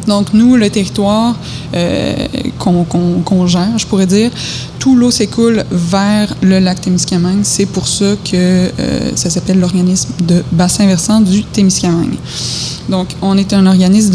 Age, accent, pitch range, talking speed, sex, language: 20-39, Canadian, 180-200 Hz, 150 wpm, female, French